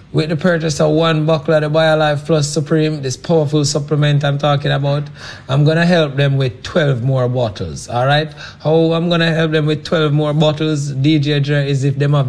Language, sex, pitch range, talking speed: English, male, 130-160 Hz, 215 wpm